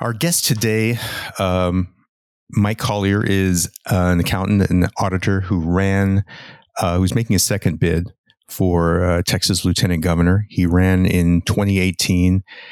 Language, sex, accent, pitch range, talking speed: English, male, American, 85-100 Hz, 135 wpm